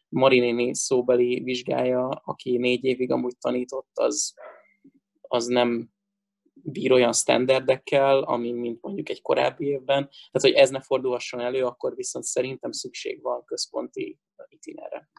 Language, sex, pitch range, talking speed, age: Hungarian, male, 125-140 Hz, 130 wpm, 20-39